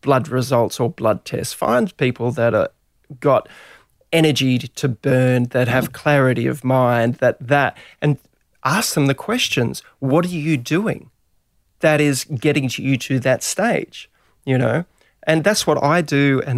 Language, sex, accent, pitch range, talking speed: English, male, Australian, 125-145 Hz, 160 wpm